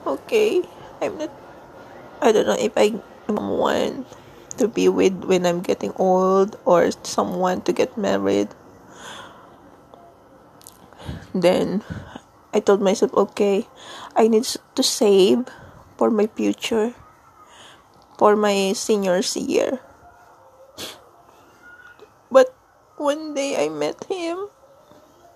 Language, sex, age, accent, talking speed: English, female, 20-39, Filipino, 100 wpm